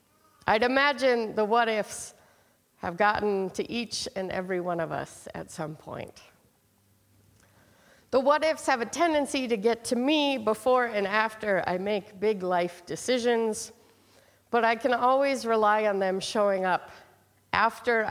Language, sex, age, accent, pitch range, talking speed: English, female, 50-69, American, 185-240 Hz, 145 wpm